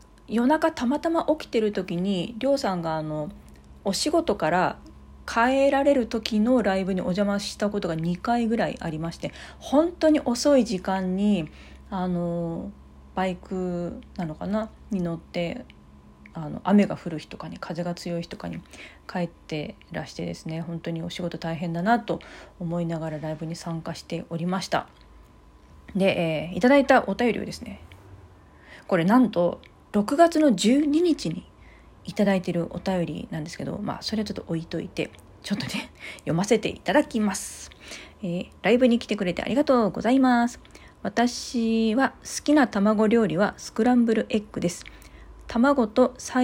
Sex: female